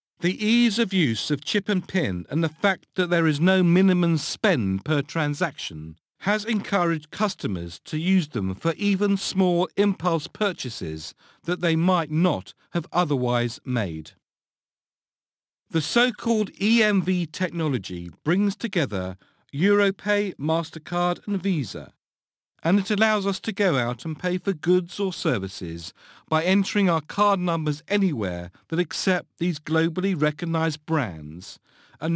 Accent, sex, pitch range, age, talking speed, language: British, male, 140-190 Hz, 50-69, 135 wpm, English